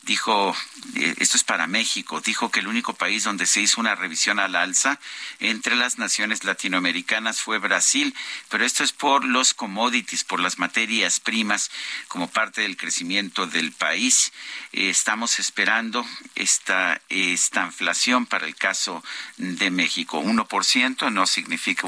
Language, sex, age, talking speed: Spanish, male, 50-69, 150 wpm